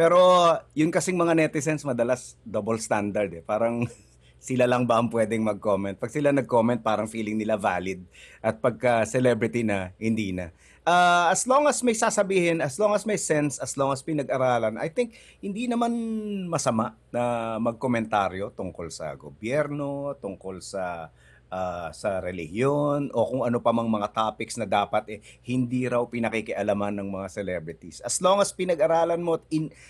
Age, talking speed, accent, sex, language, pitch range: 30-49, 165 wpm, Filipino, male, English, 110-165 Hz